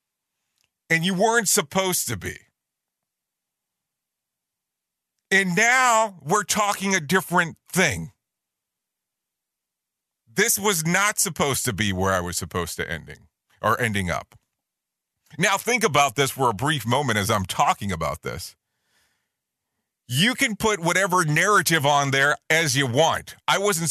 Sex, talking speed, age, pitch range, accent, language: male, 135 wpm, 40-59, 130-195 Hz, American, English